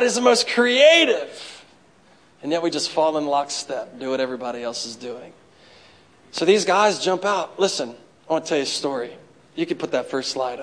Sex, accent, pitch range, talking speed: male, American, 130-170 Hz, 205 wpm